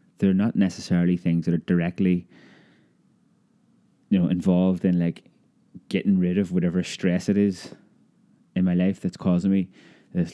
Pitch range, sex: 85-100 Hz, male